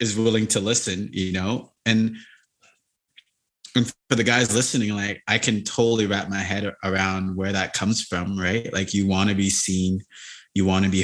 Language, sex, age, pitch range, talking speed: English, male, 30-49, 95-115 Hz, 190 wpm